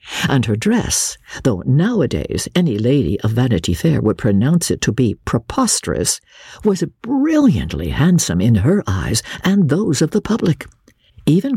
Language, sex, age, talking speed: English, female, 60-79, 145 wpm